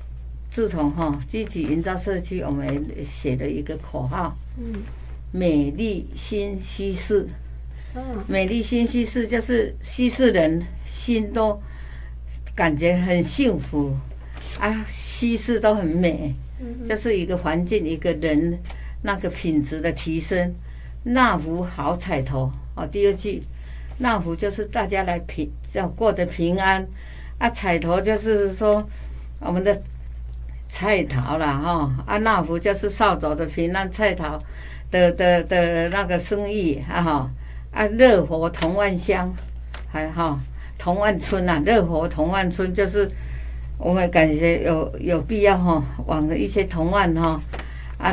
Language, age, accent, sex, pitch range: Chinese, 60-79, American, female, 135-195 Hz